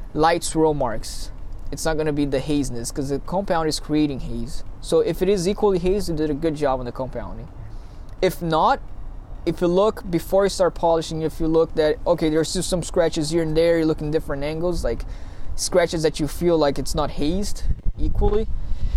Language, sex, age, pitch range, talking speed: English, male, 20-39, 130-170 Hz, 210 wpm